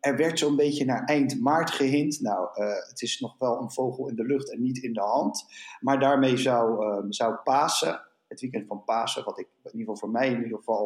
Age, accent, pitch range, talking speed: 50-69, Dutch, 115-135 Hz, 245 wpm